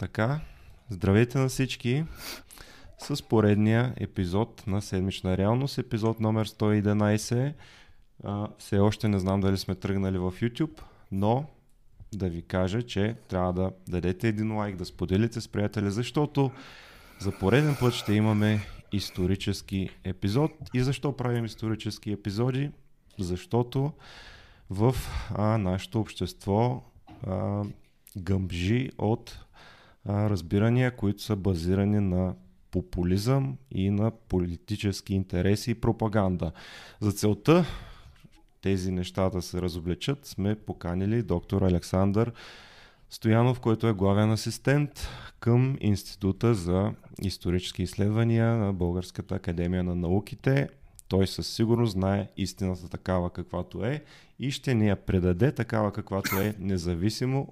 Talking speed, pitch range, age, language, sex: 115 wpm, 95-115 Hz, 30-49, Bulgarian, male